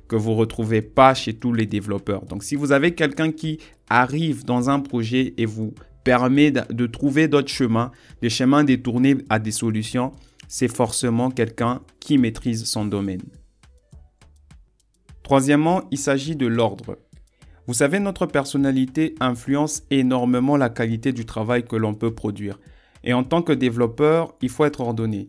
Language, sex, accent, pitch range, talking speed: French, male, French, 115-140 Hz, 155 wpm